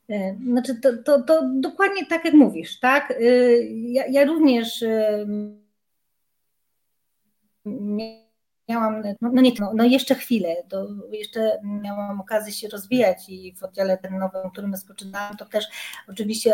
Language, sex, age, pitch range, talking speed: Polish, female, 30-49, 205-250 Hz, 135 wpm